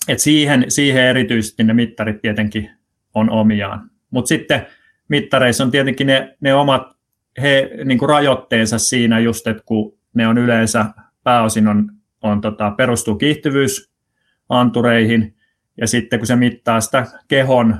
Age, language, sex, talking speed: 30-49, Finnish, male, 135 wpm